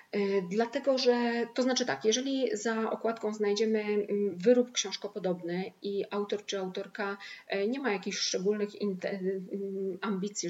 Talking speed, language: 115 wpm, Polish